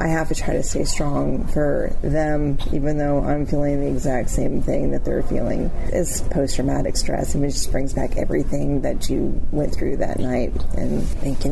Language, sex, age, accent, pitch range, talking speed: English, female, 30-49, American, 135-145 Hz, 205 wpm